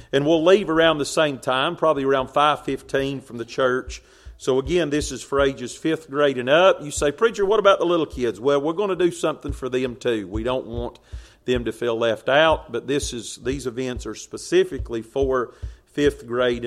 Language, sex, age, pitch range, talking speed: English, male, 40-59, 125-165 Hz, 210 wpm